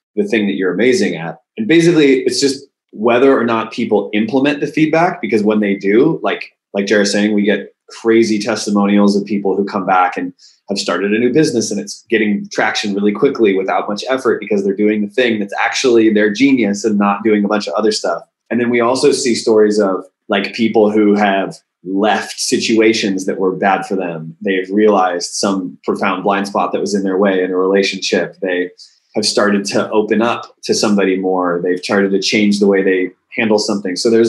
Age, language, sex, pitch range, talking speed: 20-39, English, male, 95-115 Hz, 205 wpm